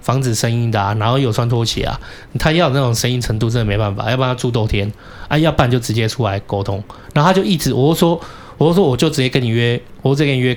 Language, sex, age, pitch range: Chinese, male, 20-39, 110-135 Hz